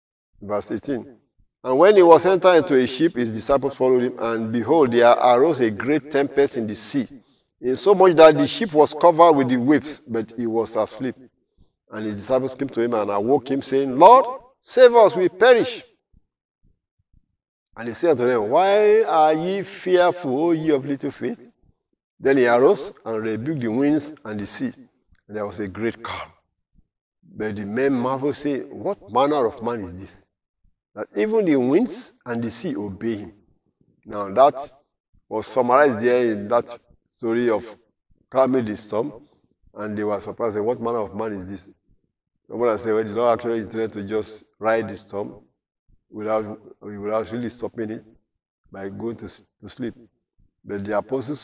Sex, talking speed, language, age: male, 175 wpm, English, 50-69